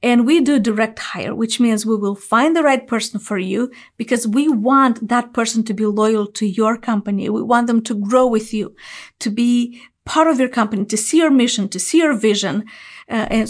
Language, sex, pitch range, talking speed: English, female, 210-250 Hz, 220 wpm